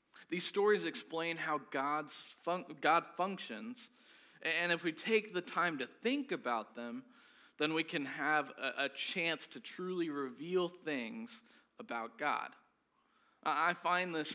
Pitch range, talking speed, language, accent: 135-205 Hz, 145 wpm, English, American